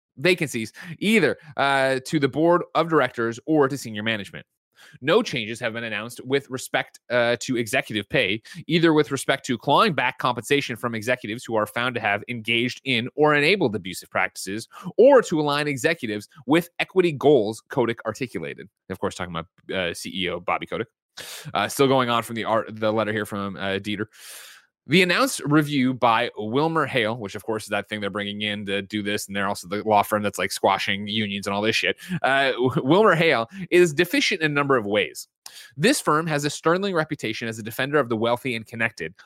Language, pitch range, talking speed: English, 105-150 Hz, 195 wpm